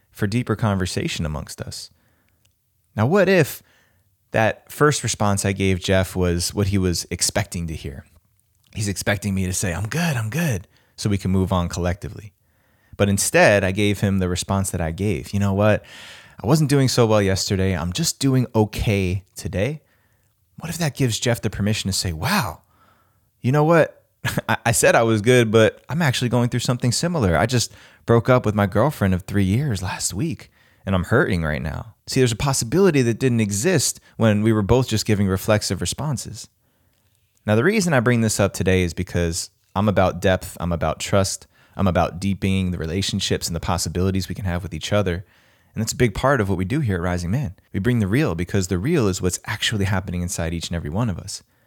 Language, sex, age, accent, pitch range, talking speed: English, male, 20-39, American, 95-115 Hz, 205 wpm